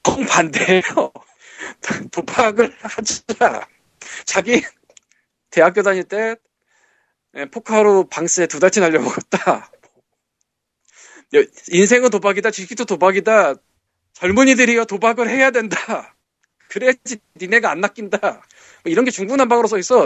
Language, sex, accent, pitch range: Korean, male, native, 160-235 Hz